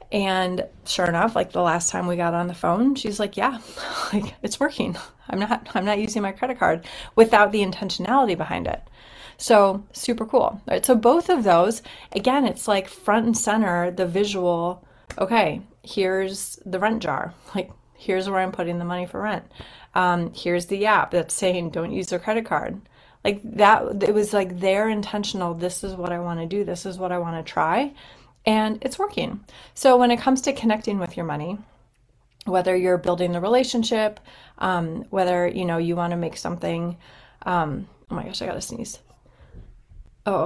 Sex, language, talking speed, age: female, English, 185 wpm, 30-49